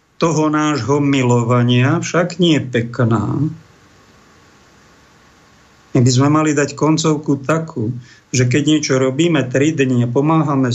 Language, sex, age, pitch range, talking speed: Slovak, male, 50-69, 130-160 Hz, 115 wpm